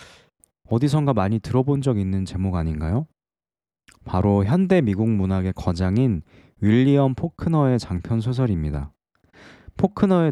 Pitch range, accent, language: 95-135 Hz, native, Korean